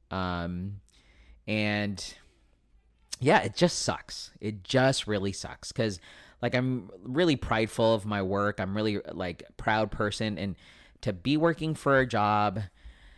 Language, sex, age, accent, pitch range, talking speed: English, male, 30-49, American, 100-125 Hz, 135 wpm